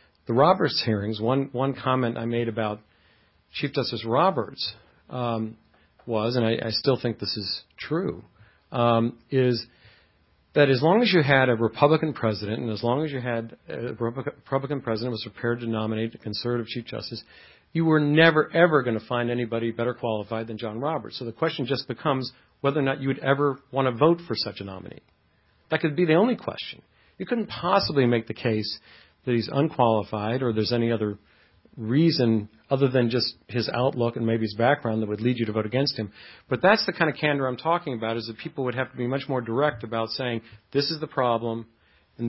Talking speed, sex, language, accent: 205 wpm, male, English, American